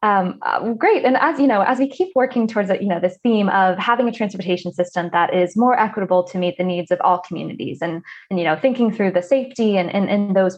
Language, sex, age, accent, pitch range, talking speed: English, female, 20-39, American, 180-235 Hz, 245 wpm